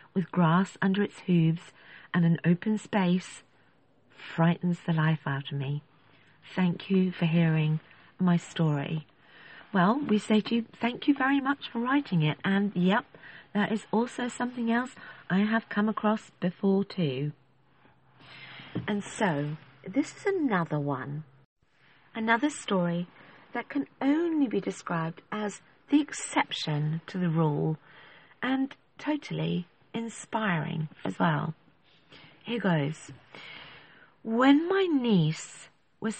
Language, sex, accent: English, female, British